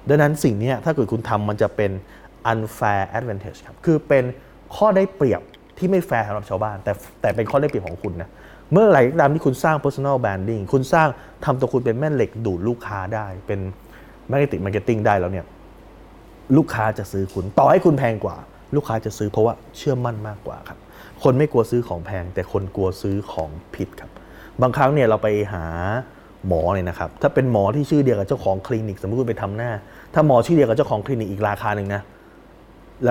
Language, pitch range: Thai, 100-130 Hz